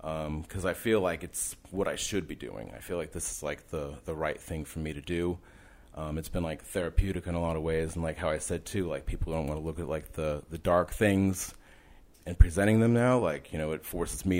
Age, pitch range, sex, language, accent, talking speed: 30-49, 80-100 Hz, male, English, American, 265 wpm